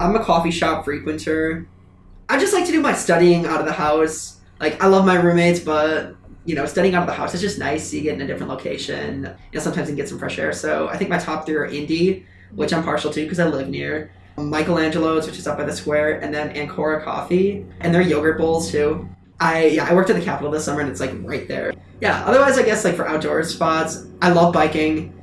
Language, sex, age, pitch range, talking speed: English, male, 20-39, 155-185 Hz, 245 wpm